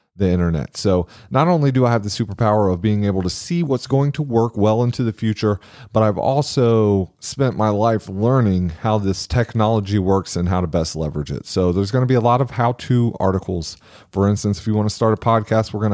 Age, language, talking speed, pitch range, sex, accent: 30-49, English, 230 wpm, 95-125 Hz, male, American